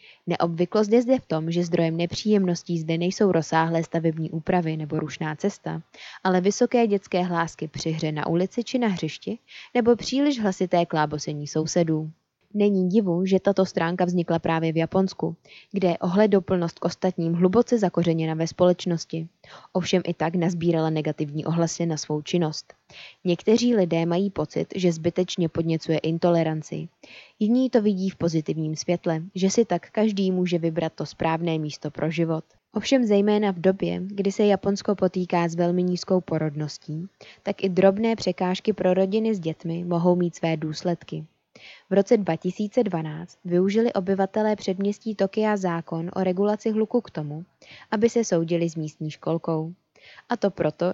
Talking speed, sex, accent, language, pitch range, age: 155 wpm, female, native, Czech, 165-200 Hz, 20-39